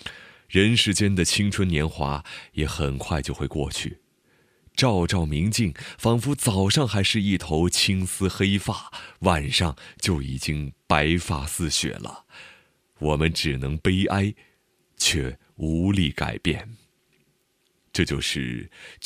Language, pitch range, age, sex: Chinese, 80-115 Hz, 30-49, male